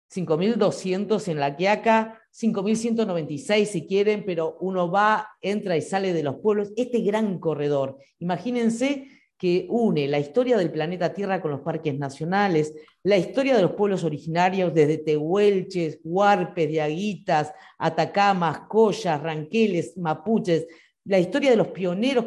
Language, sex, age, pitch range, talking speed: Spanish, female, 40-59, 165-215 Hz, 135 wpm